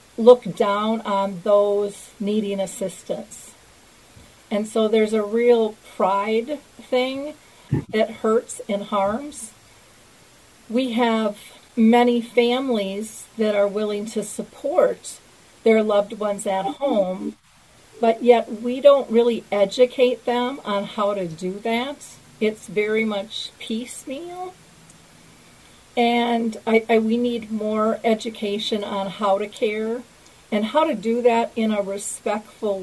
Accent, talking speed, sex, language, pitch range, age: American, 115 wpm, female, English, 205-240 Hz, 40-59